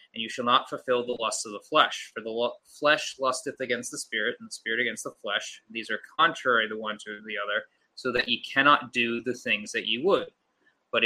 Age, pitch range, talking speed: 20-39, 115-150 Hz, 230 wpm